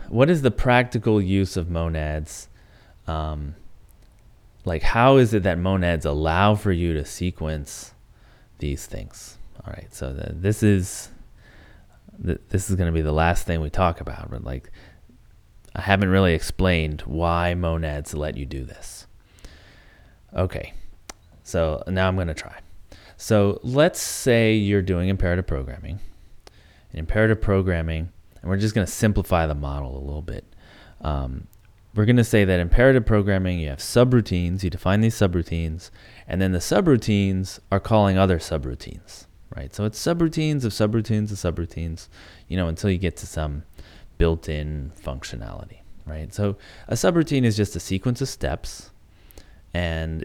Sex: male